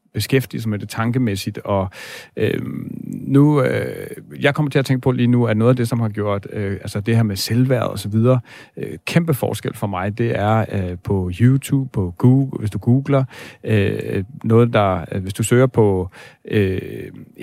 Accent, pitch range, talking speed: native, 105-125 Hz, 190 wpm